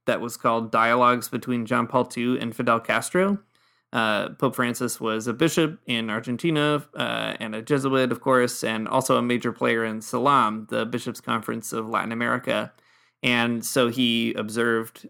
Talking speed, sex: 165 wpm, male